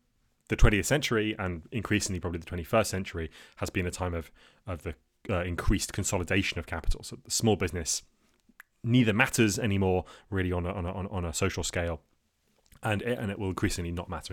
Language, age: English, 30-49